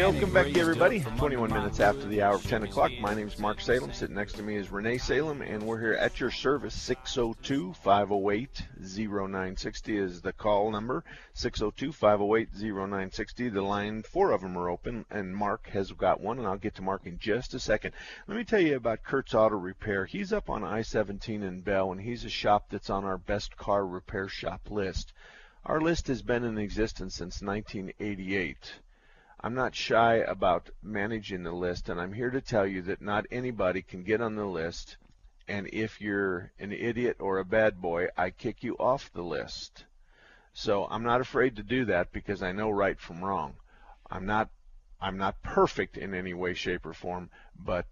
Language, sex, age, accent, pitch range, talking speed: English, male, 50-69, American, 95-115 Hz, 190 wpm